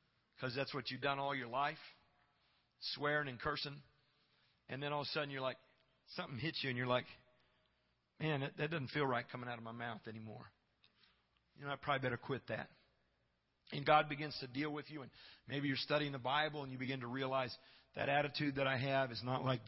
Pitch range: 135-170 Hz